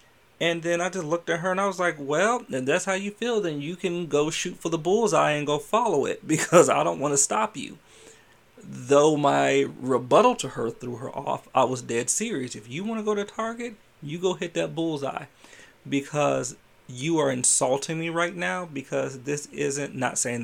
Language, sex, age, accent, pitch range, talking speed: English, male, 30-49, American, 125-165 Hz, 210 wpm